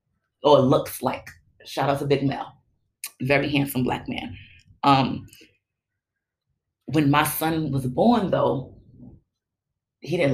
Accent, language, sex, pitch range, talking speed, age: American, English, female, 130-160 Hz, 130 wpm, 30-49